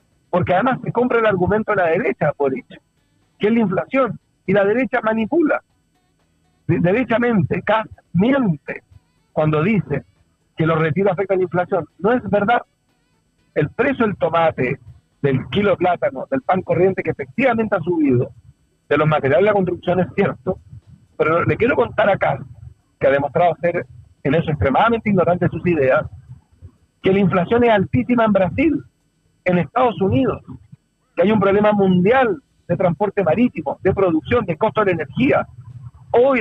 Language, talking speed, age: Spanish, 160 wpm, 50-69